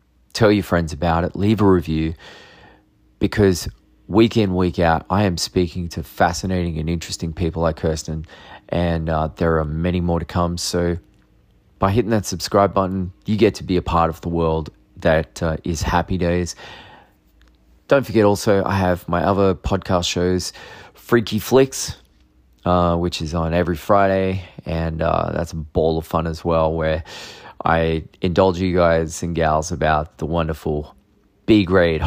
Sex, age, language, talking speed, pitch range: male, 30-49, English, 165 wpm, 80-95 Hz